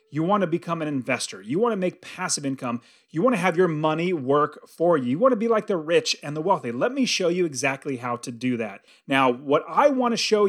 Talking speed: 265 wpm